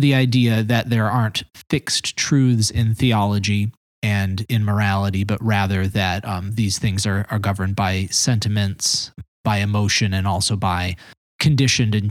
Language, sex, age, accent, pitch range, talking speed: English, male, 20-39, American, 95-115 Hz, 150 wpm